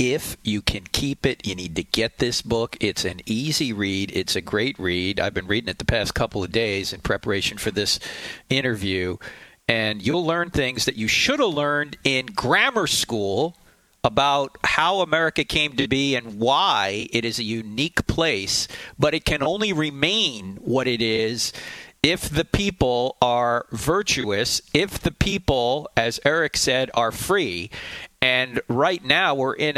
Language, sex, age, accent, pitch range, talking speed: English, male, 40-59, American, 115-170 Hz, 170 wpm